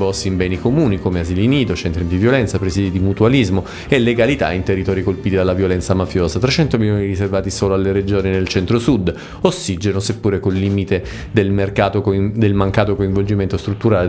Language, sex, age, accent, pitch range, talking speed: Italian, male, 30-49, native, 95-105 Hz, 170 wpm